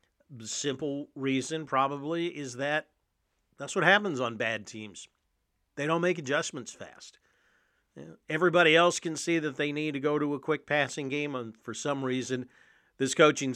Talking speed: 160 wpm